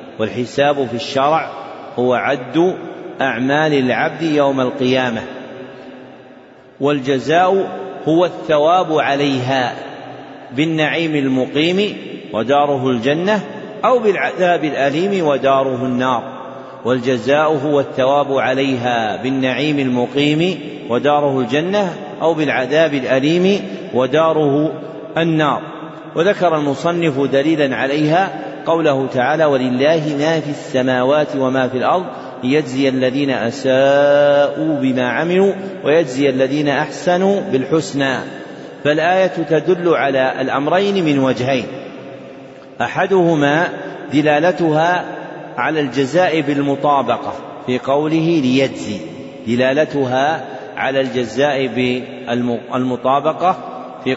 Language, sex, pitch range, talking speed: Arabic, male, 130-160 Hz, 85 wpm